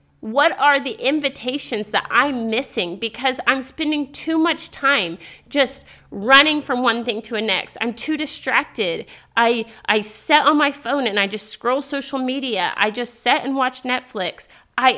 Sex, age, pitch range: female, 30-49, 215-275 Hz